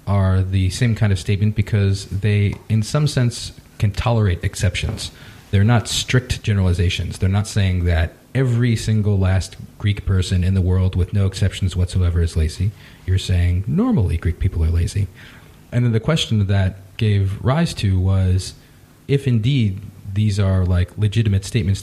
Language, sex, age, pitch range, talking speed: English, male, 40-59, 95-110 Hz, 160 wpm